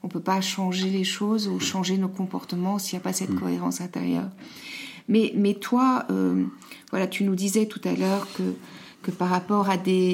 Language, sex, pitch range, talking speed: French, female, 175-205 Hz, 205 wpm